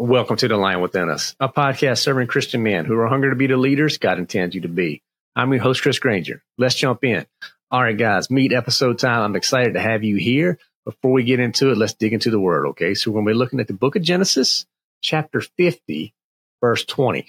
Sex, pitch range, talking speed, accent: male, 100-130 Hz, 235 wpm, American